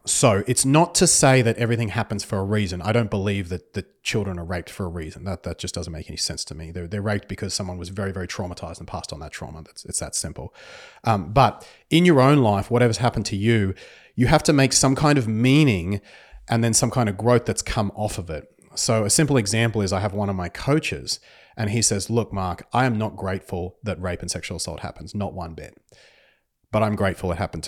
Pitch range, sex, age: 90-110 Hz, male, 40-59